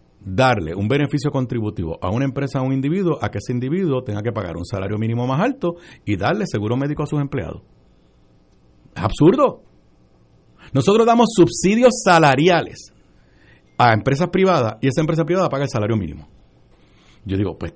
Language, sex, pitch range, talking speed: Spanish, male, 100-150 Hz, 165 wpm